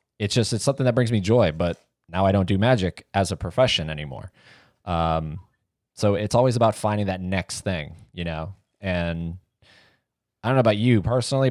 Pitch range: 90-115 Hz